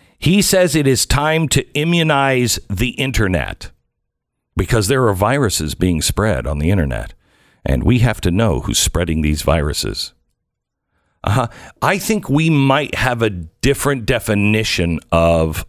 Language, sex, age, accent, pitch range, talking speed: English, male, 50-69, American, 95-140 Hz, 145 wpm